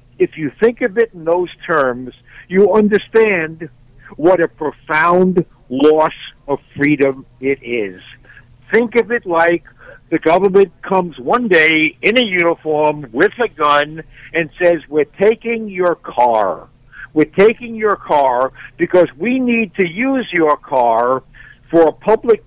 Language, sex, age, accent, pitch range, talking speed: English, male, 60-79, American, 140-195 Hz, 140 wpm